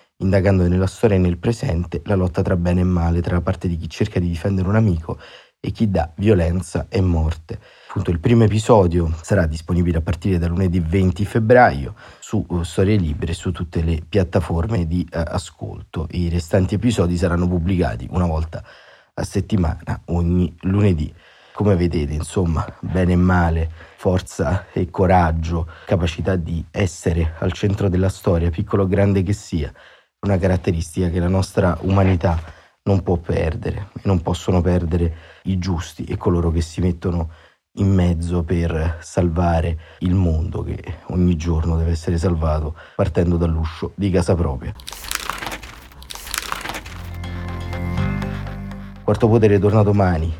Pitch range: 85-100 Hz